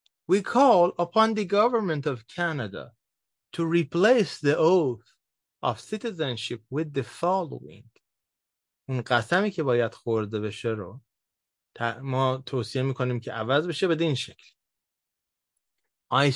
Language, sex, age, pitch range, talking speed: Persian, male, 30-49, 120-155 Hz, 120 wpm